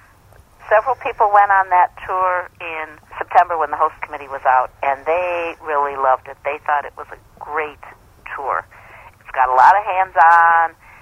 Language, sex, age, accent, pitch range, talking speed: English, female, 50-69, American, 140-190 Hz, 175 wpm